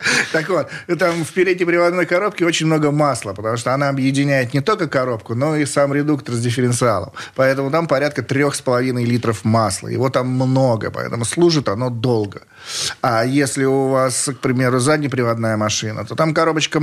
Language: Russian